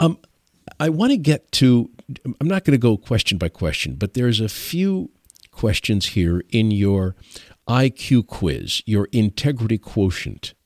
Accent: American